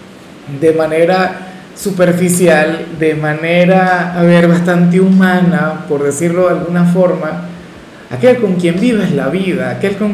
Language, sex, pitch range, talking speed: Spanish, male, 165-195 Hz, 130 wpm